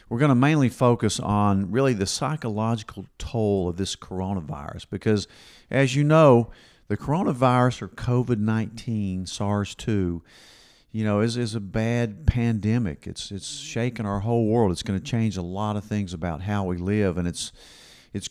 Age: 50-69